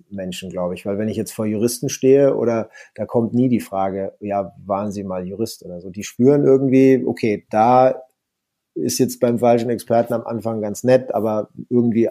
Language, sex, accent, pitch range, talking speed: German, male, German, 110-145 Hz, 200 wpm